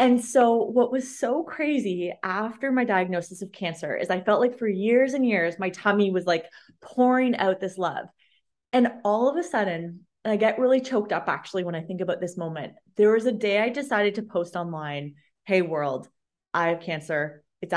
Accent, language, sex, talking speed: American, English, female, 200 wpm